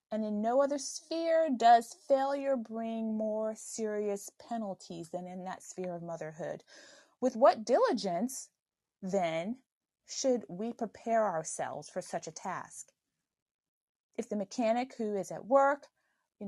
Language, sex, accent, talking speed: English, female, American, 135 wpm